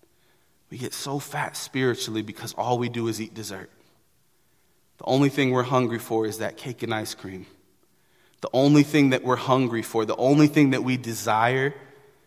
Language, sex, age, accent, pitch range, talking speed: English, male, 30-49, American, 110-140 Hz, 180 wpm